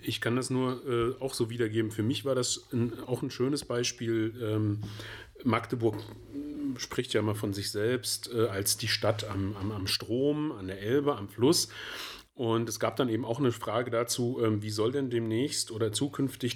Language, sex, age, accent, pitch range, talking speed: German, male, 40-59, German, 110-130 Hz, 190 wpm